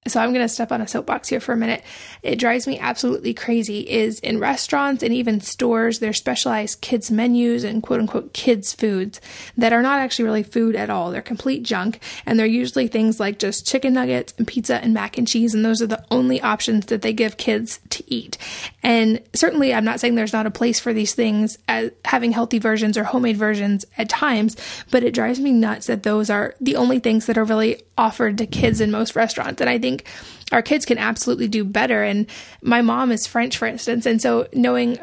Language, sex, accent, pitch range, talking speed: English, female, American, 220-240 Hz, 220 wpm